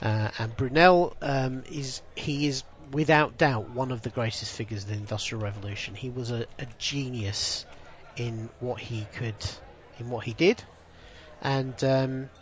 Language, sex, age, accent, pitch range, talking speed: English, male, 40-59, British, 115-150 Hz, 155 wpm